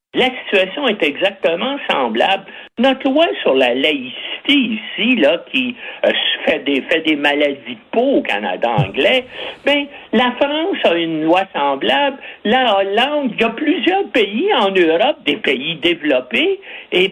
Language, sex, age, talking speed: French, male, 60-79, 150 wpm